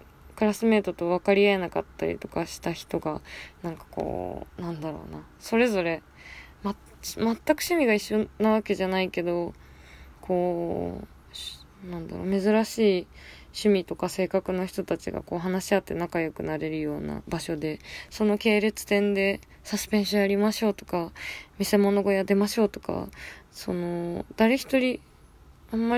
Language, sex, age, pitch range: Japanese, female, 20-39, 170-210 Hz